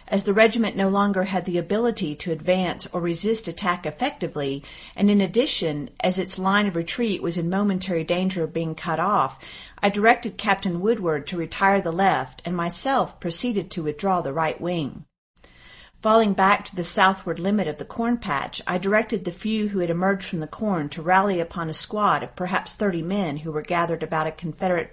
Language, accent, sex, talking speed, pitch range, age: English, American, female, 195 wpm, 170-210 Hz, 40-59